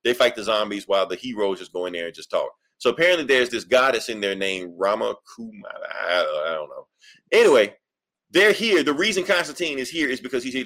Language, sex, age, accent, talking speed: English, male, 30-49, American, 215 wpm